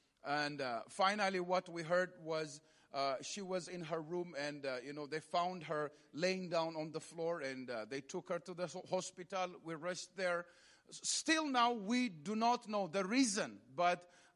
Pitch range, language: 175-230 Hz, English